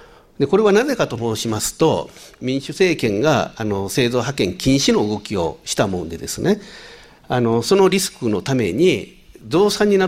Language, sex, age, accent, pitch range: Japanese, male, 50-69, native, 115-185 Hz